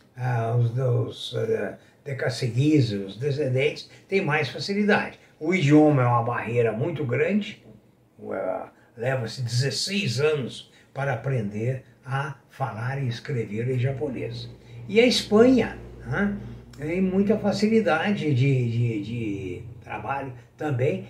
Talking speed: 115 wpm